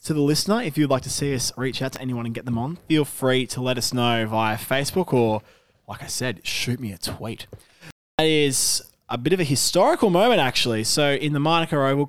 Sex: male